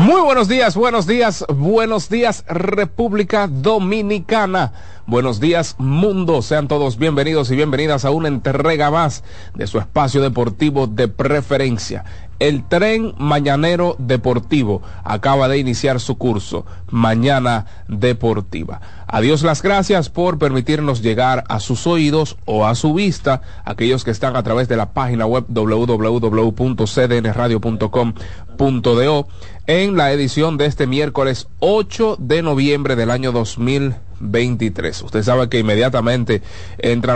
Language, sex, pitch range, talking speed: Spanish, male, 110-150 Hz, 125 wpm